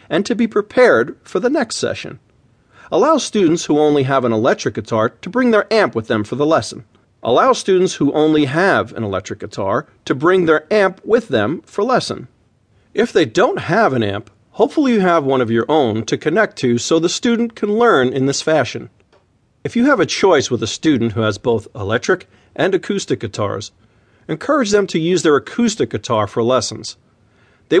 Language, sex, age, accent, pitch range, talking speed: English, male, 40-59, American, 115-185 Hz, 195 wpm